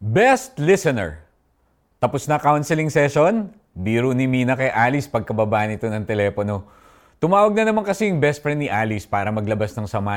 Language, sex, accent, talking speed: Filipino, male, native, 165 wpm